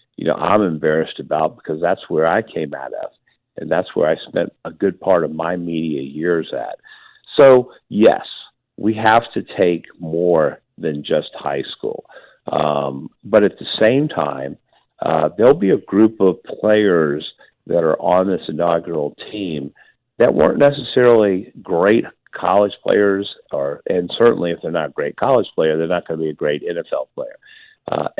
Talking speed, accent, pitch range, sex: 170 wpm, American, 80-110 Hz, male